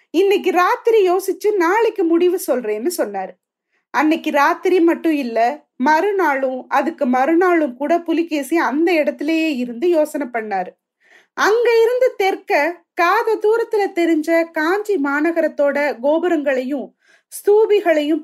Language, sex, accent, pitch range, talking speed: Tamil, female, native, 295-370 Hz, 70 wpm